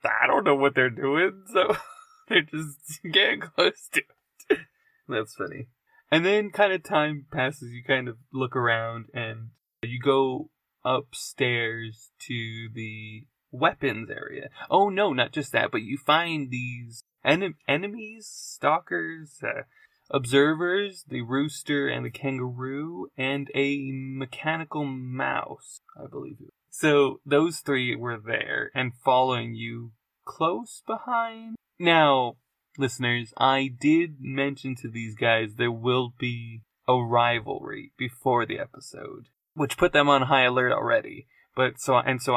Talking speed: 135 wpm